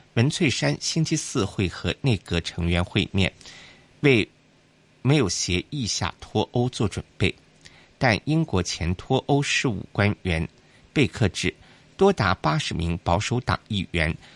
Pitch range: 90-135 Hz